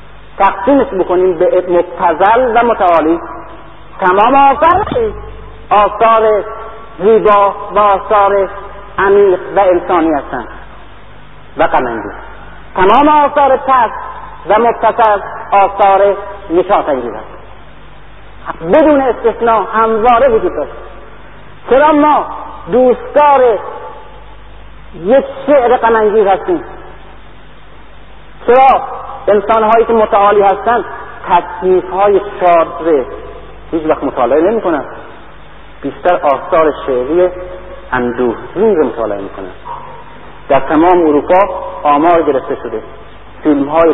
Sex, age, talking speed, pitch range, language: male, 50-69, 95 wpm, 140-225 Hz, Persian